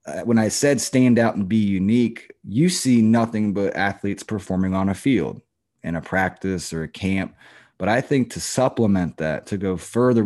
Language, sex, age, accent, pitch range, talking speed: English, male, 20-39, American, 95-120 Hz, 185 wpm